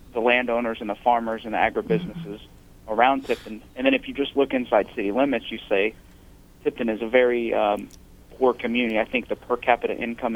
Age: 40-59